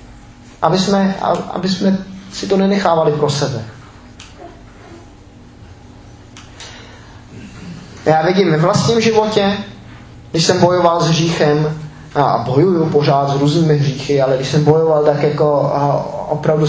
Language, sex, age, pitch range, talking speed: Czech, male, 20-39, 140-185 Hz, 110 wpm